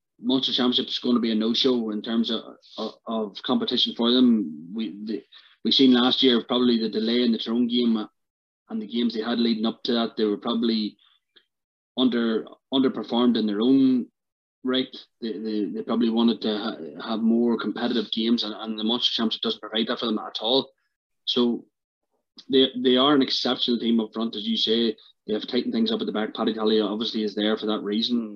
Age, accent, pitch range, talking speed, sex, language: 20-39, Irish, 110-125 Hz, 205 wpm, male, English